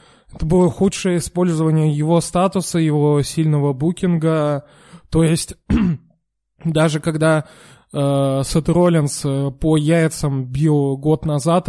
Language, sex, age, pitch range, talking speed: Russian, male, 20-39, 135-165 Hz, 105 wpm